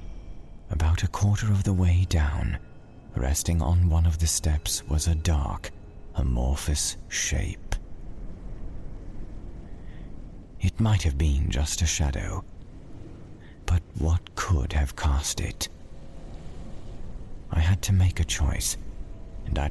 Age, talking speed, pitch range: 40-59, 120 wpm, 75-95 Hz